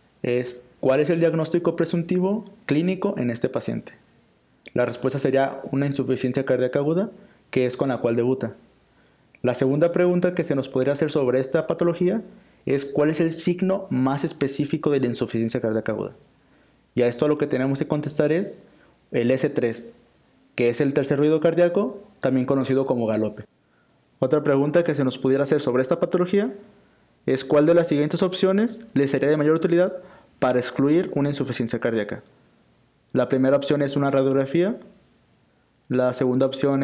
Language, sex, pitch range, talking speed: English, male, 130-165 Hz, 170 wpm